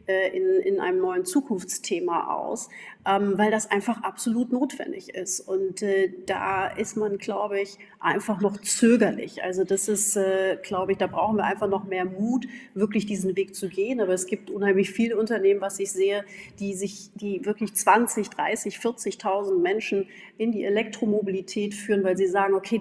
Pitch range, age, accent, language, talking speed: 190-225 Hz, 40-59, German, German, 175 wpm